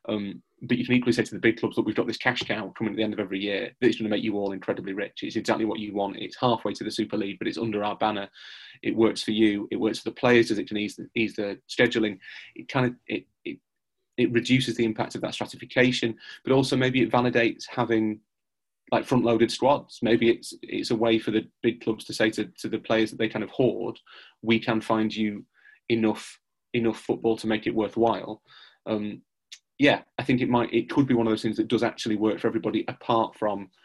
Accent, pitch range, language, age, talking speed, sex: British, 105-120 Hz, English, 30-49, 245 wpm, male